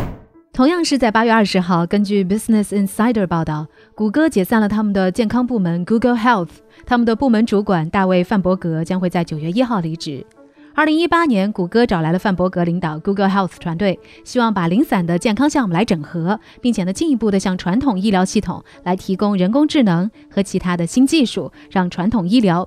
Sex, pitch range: female, 180-245 Hz